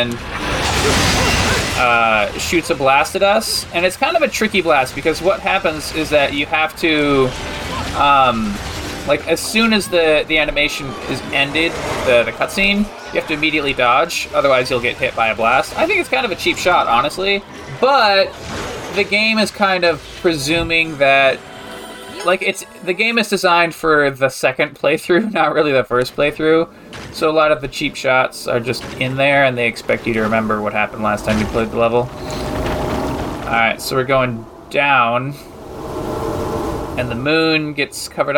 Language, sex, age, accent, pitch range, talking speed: English, male, 20-39, American, 120-175 Hz, 175 wpm